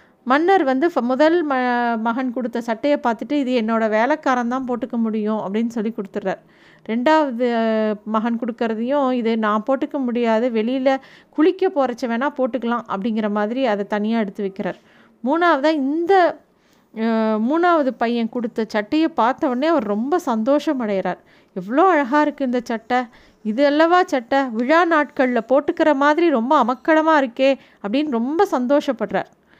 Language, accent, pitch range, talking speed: Tamil, native, 225-285 Hz, 130 wpm